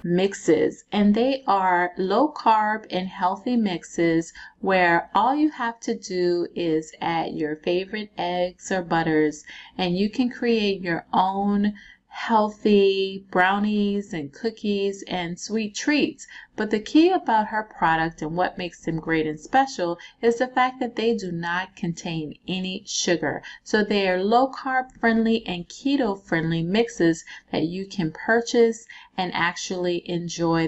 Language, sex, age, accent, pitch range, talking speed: English, female, 30-49, American, 175-230 Hz, 145 wpm